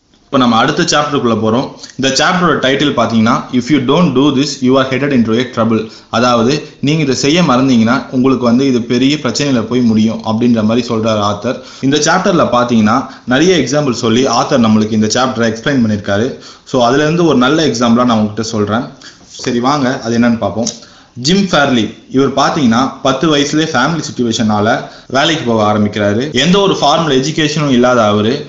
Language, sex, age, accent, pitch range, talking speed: Tamil, male, 20-39, native, 115-145 Hz, 165 wpm